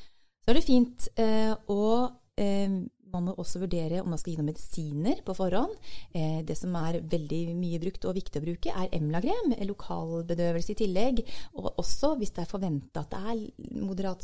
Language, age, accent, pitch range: English, 30-49, Swedish, 155-200 Hz